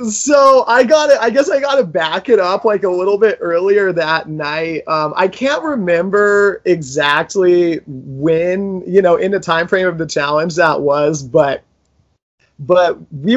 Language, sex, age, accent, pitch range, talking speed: English, male, 30-49, American, 150-195 Hz, 175 wpm